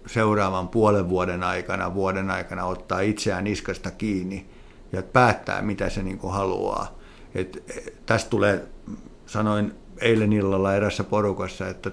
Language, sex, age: Finnish, male, 60-79